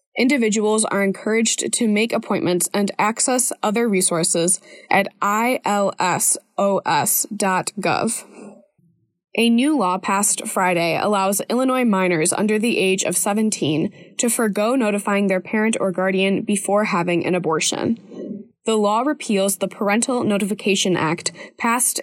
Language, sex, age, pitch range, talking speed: English, female, 20-39, 185-225 Hz, 120 wpm